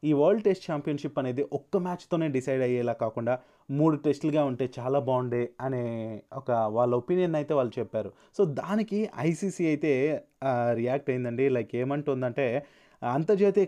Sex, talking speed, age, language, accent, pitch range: male, 135 wpm, 30-49, Telugu, native, 130-170 Hz